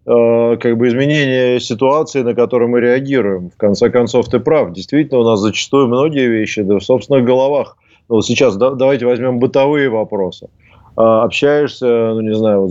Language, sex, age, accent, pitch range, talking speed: Russian, male, 20-39, native, 105-125 Hz, 155 wpm